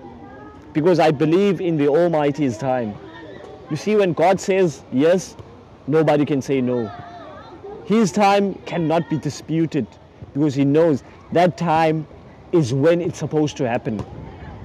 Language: English